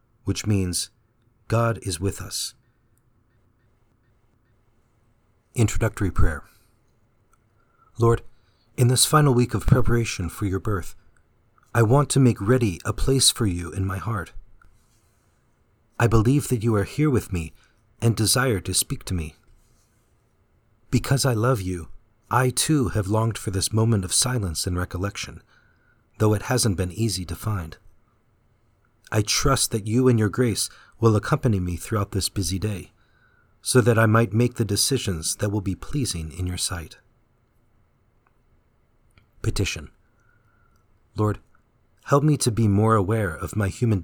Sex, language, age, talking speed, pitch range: male, English, 40-59, 145 wpm, 100-120 Hz